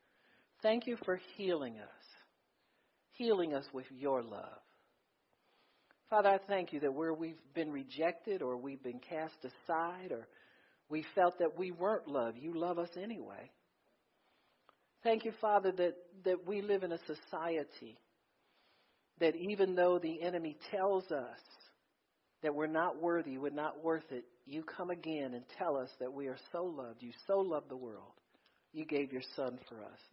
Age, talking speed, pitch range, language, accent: 50-69, 165 wpm, 125-175 Hz, English, American